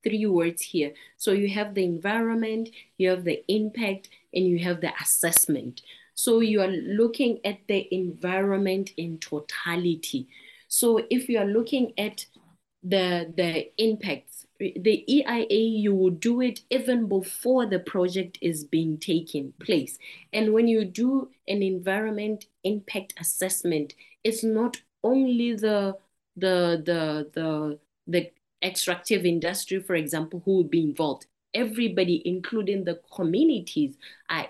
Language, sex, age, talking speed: English, female, 30-49, 135 wpm